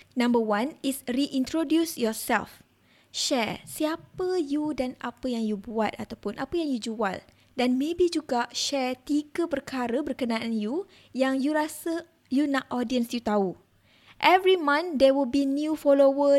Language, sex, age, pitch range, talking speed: Malay, female, 20-39, 230-295 Hz, 150 wpm